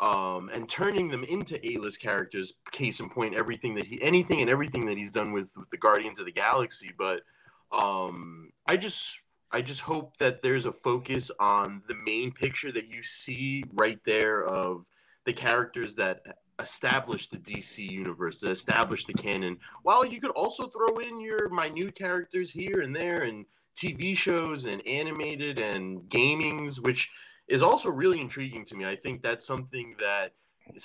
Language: English